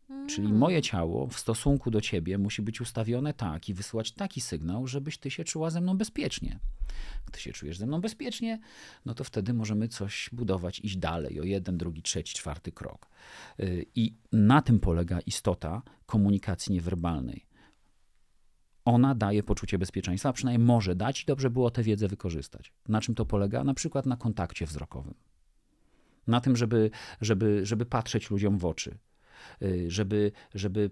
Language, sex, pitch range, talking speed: Polish, male, 95-120 Hz, 160 wpm